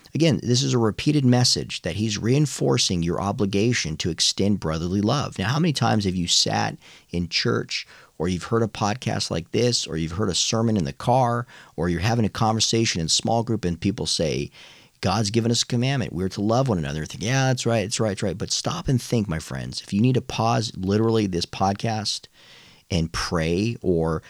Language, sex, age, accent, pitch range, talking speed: English, male, 40-59, American, 90-120 Hz, 210 wpm